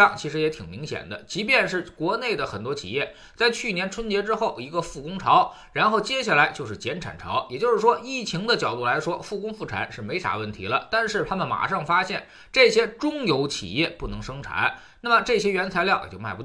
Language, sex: Chinese, male